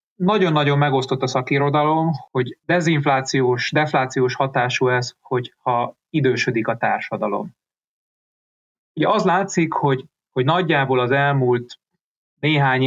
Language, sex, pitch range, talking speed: Hungarian, male, 120-145 Hz, 105 wpm